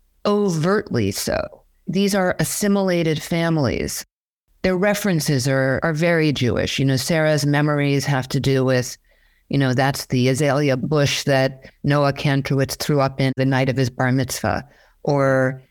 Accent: American